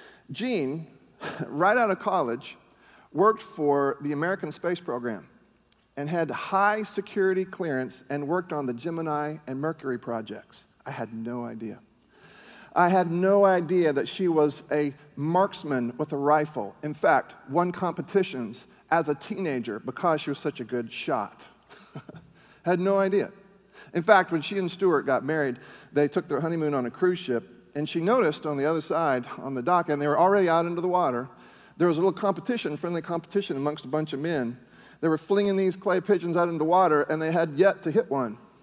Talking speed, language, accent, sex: 185 wpm, English, American, male